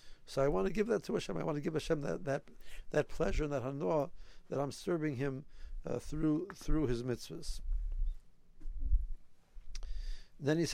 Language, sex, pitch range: English, male, 125-155 Hz